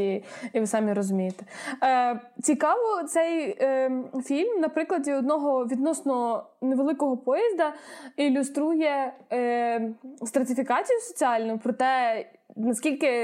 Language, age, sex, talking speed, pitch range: Ukrainian, 20-39, female, 85 wpm, 240-290 Hz